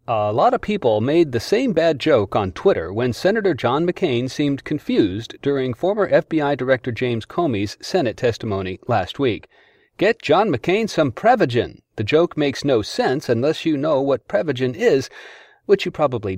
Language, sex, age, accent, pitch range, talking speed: English, male, 40-59, American, 115-155 Hz, 170 wpm